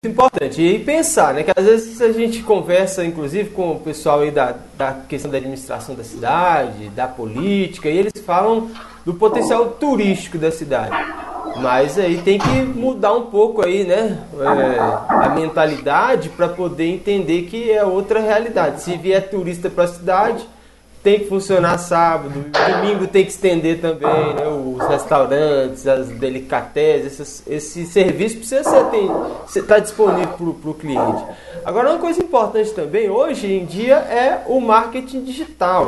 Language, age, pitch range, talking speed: Portuguese, 20-39, 155-225 Hz, 155 wpm